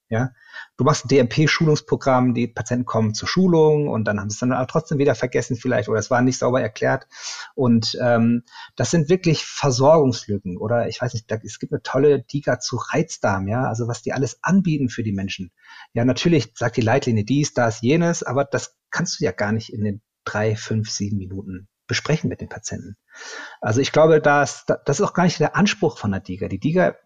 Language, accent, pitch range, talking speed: German, German, 110-150 Hz, 210 wpm